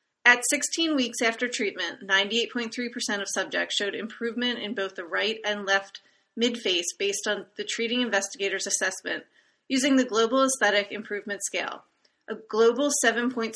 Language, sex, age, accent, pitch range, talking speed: English, female, 30-49, American, 195-240 Hz, 140 wpm